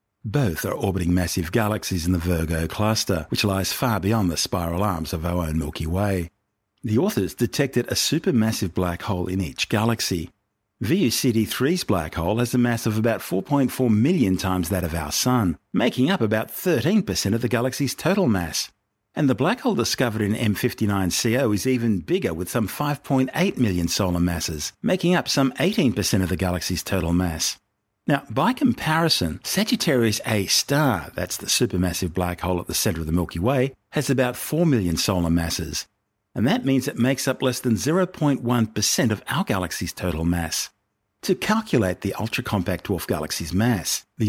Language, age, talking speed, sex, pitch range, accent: English, 50-69, 170 wpm, male, 90-125 Hz, Australian